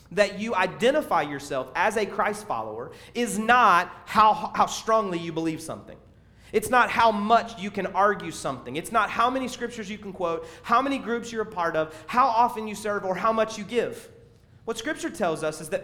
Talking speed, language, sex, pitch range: 205 wpm, English, male, 185-230 Hz